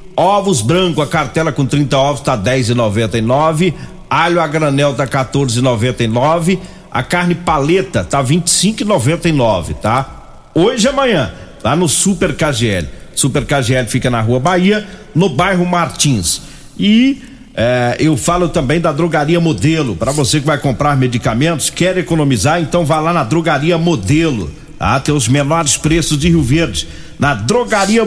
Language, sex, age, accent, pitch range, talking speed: Portuguese, male, 50-69, Brazilian, 130-170 Hz, 145 wpm